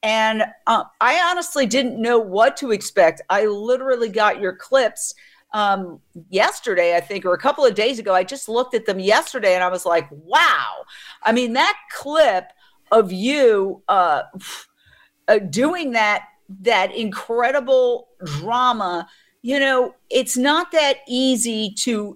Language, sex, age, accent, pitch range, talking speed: English, female, 50-69, American, 200-280 Hz, 145 wpm